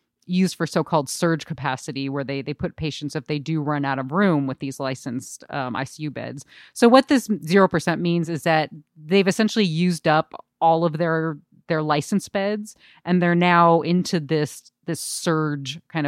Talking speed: 185 wpm